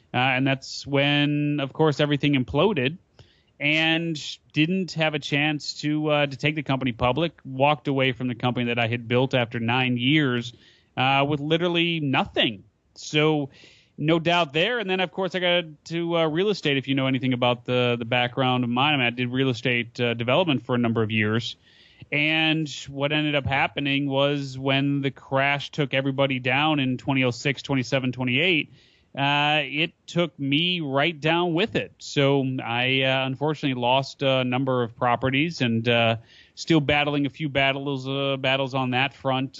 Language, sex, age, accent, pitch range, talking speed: English, male, 30-49, American, 125-150 Hz, 175 wpm